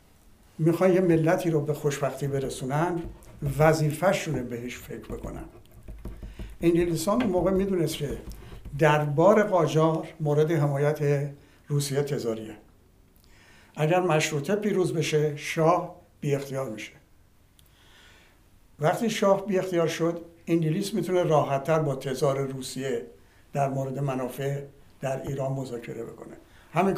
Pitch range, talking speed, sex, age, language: 135-165 Hz, 105 wpm, male, 60-79, Persian